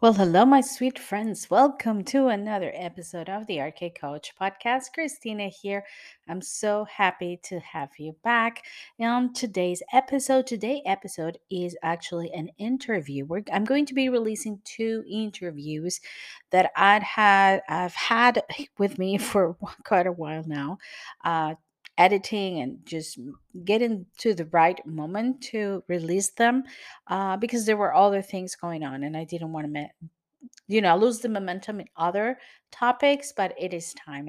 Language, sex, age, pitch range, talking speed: English, female, 40-59, 170-225 Hz, 155 wpm